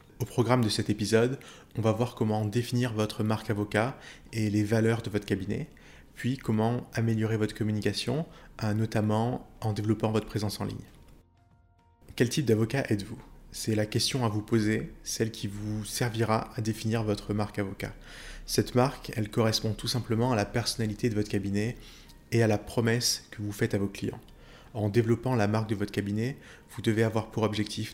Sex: male